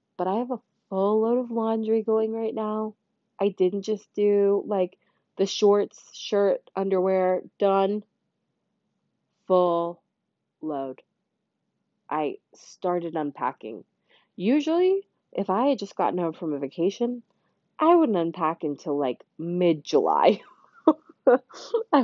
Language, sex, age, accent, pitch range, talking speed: English, female, 20-39, American, 160-210 Hz, 120 wpm